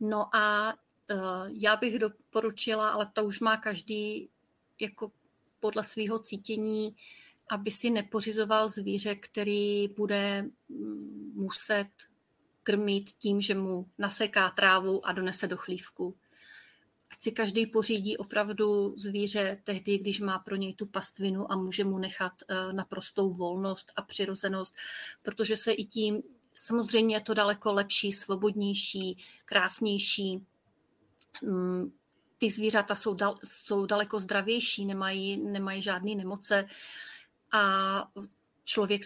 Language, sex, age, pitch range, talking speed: Czech, female, 30-49, 195-215 Hz, 120 wpm